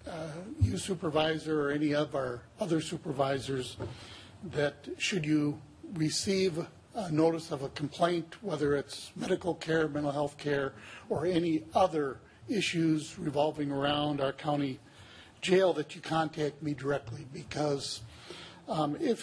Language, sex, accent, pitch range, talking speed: English, male, American, 140-165 Hz, 130 wpm